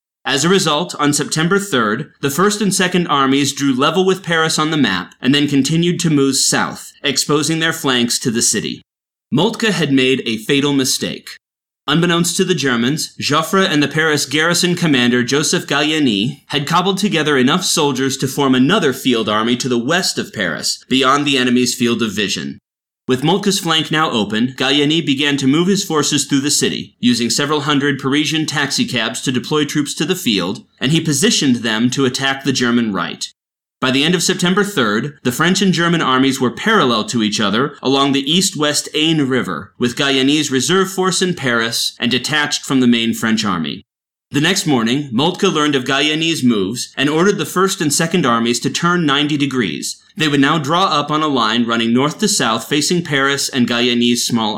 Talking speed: 190 wpm